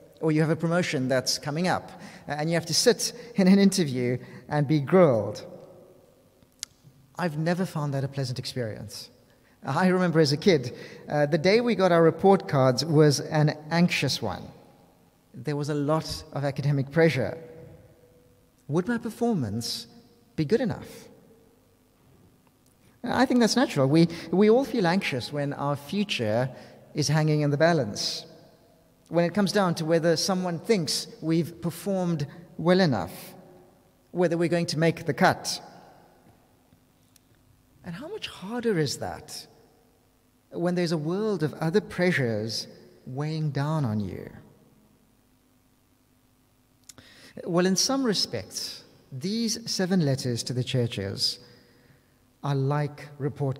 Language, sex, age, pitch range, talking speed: English, male, 40-59, 130-180 Hz, 135 wpm